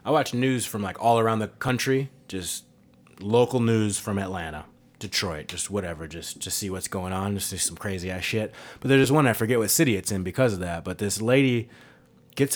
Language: English